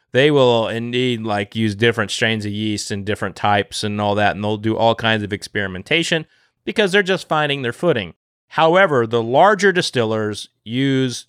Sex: male